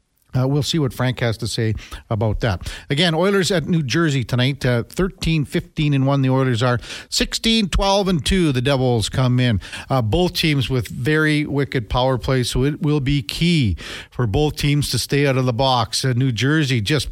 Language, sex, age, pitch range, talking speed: English, male, 50-69, 120-150 Hz, 180 wpm